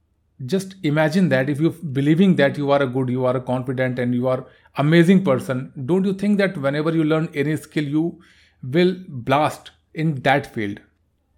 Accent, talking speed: native, 185 wpm